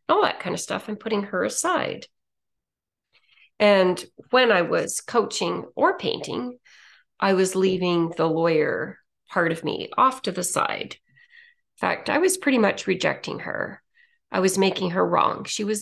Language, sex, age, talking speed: English, female, 40-59, 165 wpm